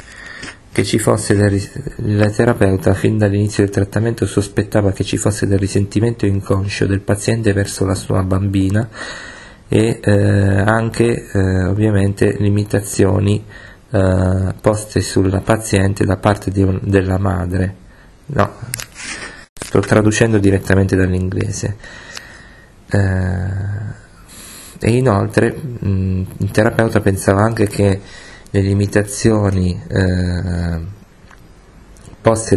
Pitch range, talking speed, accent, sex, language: 95-105 Hz, 105 wpm, native, male, Italian